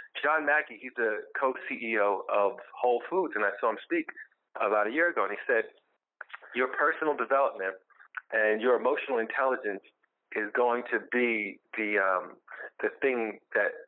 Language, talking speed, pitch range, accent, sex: English, 155 wpm, 110-185 Hz, American, male